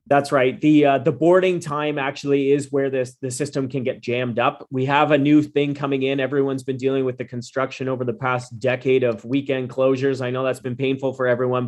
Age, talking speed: 30-49, 225 wpm